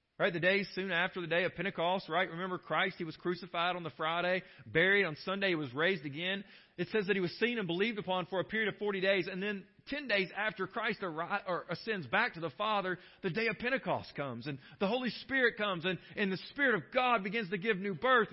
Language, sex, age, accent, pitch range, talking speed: English, male, 40-59, American, 135-200 Hz, 240 wpm